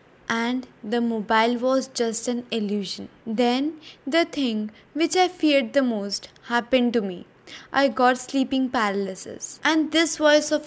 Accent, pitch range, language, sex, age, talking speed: Indian, 225-300 Hz, English, female, 20-39, 145 wpm